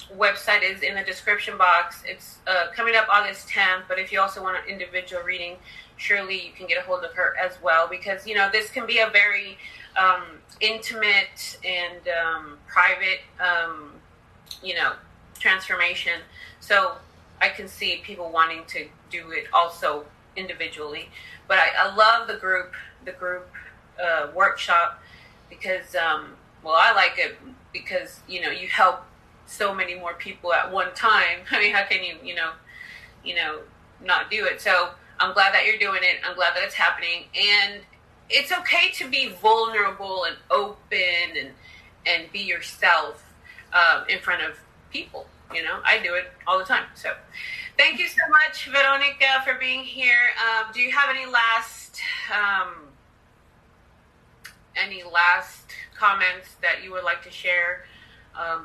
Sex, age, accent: female, 30-49, American